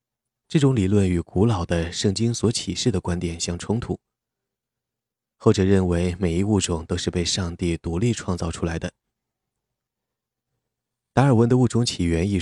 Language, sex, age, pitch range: Chinese, male, 20-39, 85-110 Hz